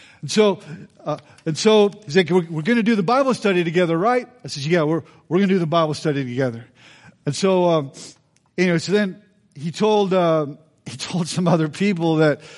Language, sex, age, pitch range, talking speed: English, male, 50-69, 140-170 Hz, 210 wpm